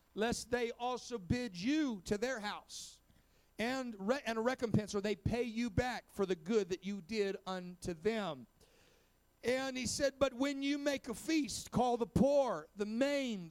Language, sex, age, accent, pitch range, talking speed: English, male, 40-59, American, 210-255 Hz, 180 wpm